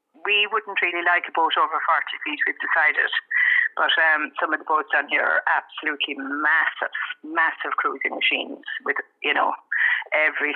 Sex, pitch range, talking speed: female, 160-250 Hz, 165 wpm